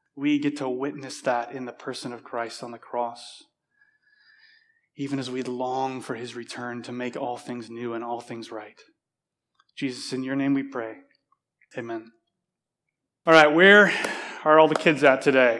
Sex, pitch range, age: male, 130-160 Hz, 20-39